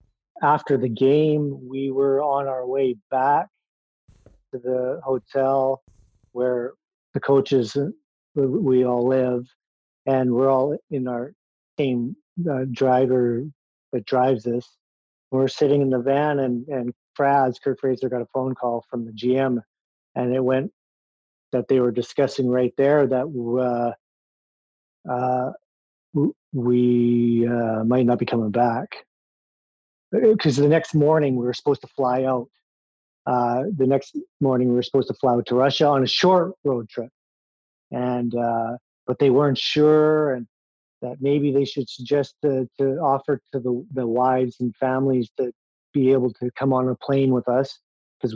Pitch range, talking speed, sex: 125-140 Hz, 155 wpm, male